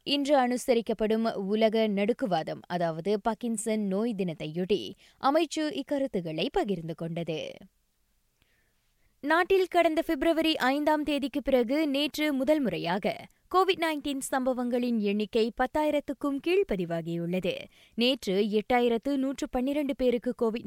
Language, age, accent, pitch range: Tamil, 20-39, native, 195-275 Hz